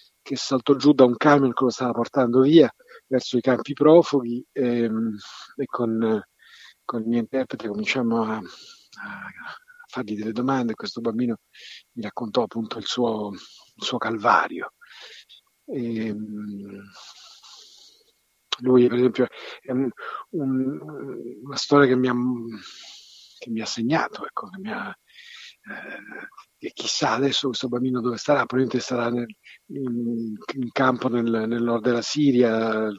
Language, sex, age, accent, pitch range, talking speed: Italian, male, 50-69, native, 115-135 Hz, 140 wpm